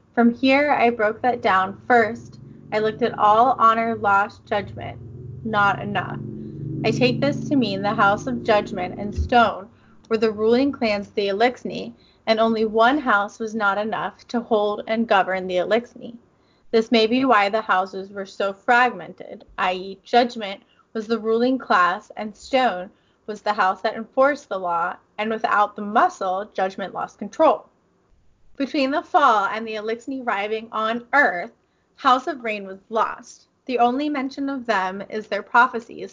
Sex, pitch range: female, 200-245 Hz